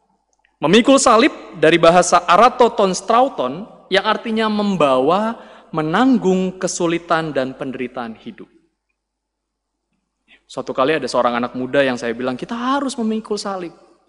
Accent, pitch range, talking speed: native, 155-225 Hz, 110 wpm